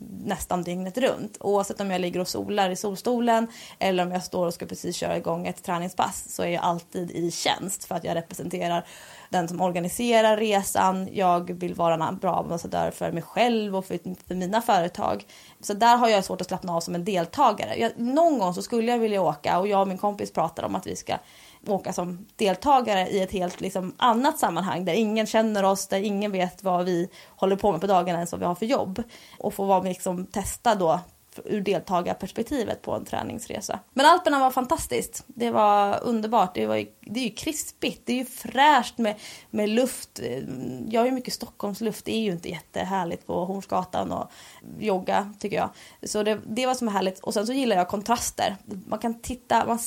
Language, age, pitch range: English, 20-39, 180-230 Hz